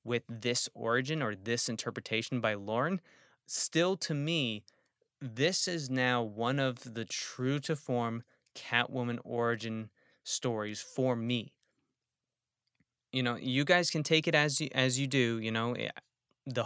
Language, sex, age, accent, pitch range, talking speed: English, male, 20-39, American, 115-135 Hz, 135 wpm